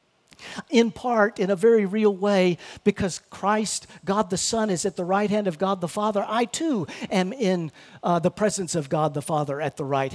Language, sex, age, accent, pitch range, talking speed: English, male, 50-69, American, 160-235 Hz, 205 wpm